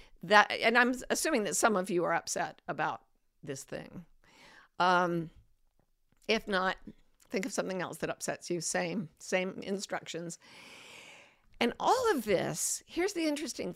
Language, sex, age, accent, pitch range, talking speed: English, female, 50-69, American, 175-225 Hz, 145 wpm